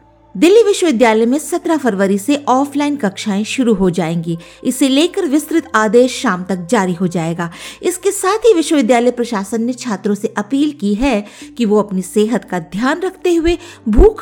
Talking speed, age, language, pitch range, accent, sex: 170 wpm, 50-69, Hindi, 195-300 Hz, native, female